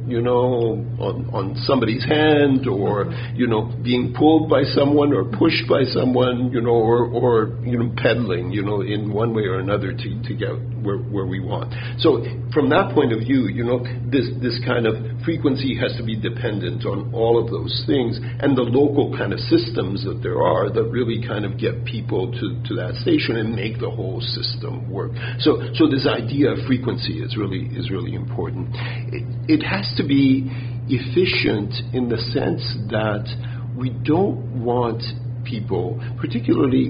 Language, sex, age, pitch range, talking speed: English, male, 50-69, 120-130 Hz, 180 wpm